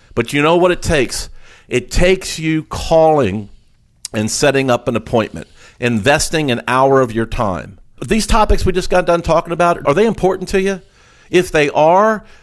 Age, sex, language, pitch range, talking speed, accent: 50-69, male, English, 120-175 Hz, 180 wpm, American